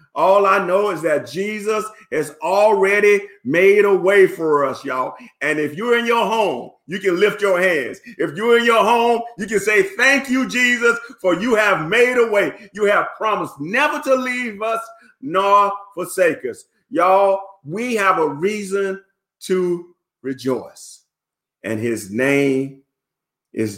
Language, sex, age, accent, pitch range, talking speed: English, male, 40-59, American, 135-200 Hz, 160 wpm